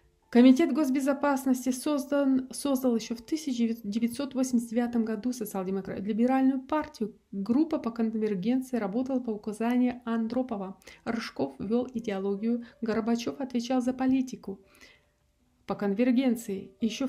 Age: 30-49